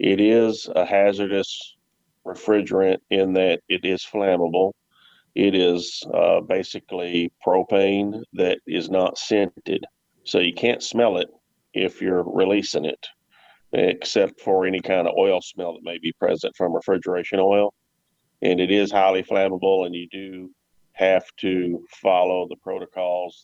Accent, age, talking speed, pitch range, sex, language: American, 40-59, 140 wpm, 90-95 Hz, male, English